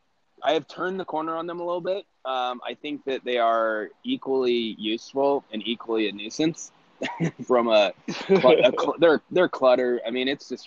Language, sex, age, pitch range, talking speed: English, male, 20-39, 105-130 Hz, 185 wpm